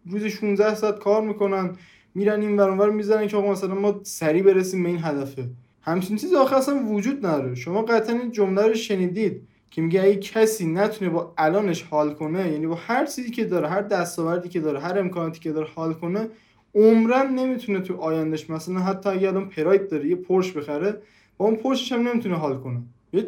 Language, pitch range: Persian, 170-220 Hz